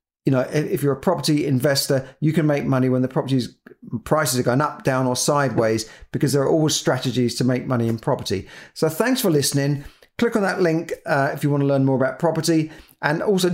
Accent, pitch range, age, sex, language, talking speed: British, 135-165 Hz, 40-59, male, English, 220 wpm